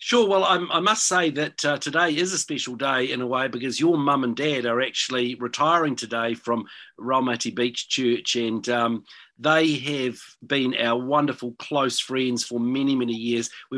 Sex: male